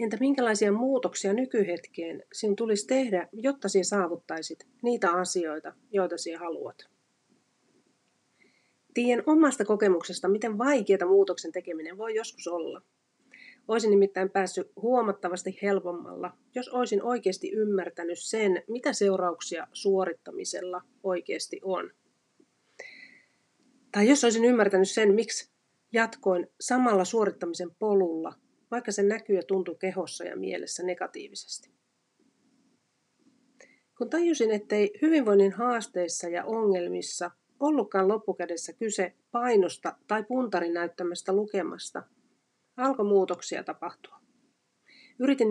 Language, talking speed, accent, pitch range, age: Finnish, 100 wpm, native, 180-240 Hz, 30-49